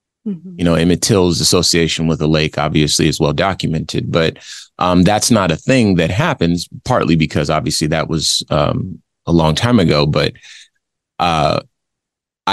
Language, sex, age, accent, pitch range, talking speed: English, male, 30-49, American, 80-95 Hz, 155 wpm